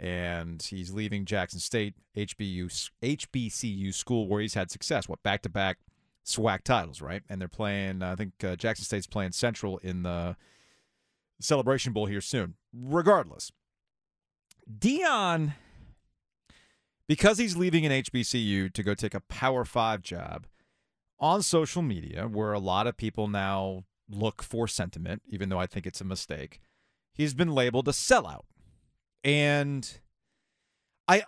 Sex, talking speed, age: male, 140 wpm, 40-59